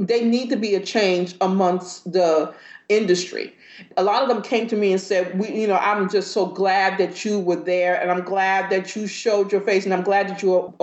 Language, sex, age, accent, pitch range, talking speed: English, female, 40-59, American, 185-235 Hz, 235 wpm